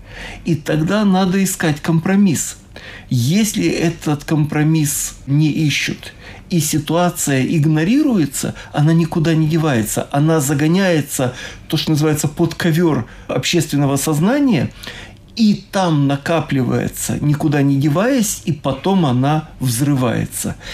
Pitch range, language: 135-170 Hz, Russian